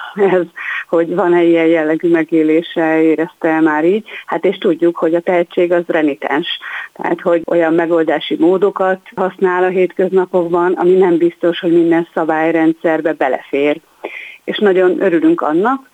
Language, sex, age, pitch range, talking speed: Hungarian, female, 30-49, 165-190 Hz, 135 wpm